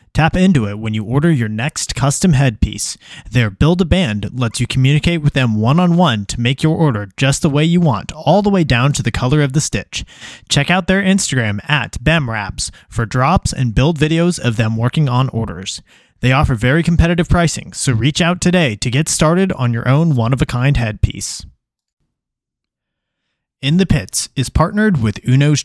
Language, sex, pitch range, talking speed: English, male, 115-155 Hz, 180 wpm